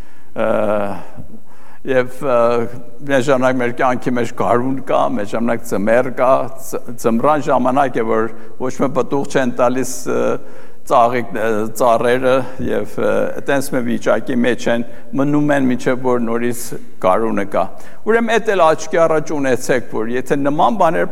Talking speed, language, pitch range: 125 wpm, English, 120-170 Hz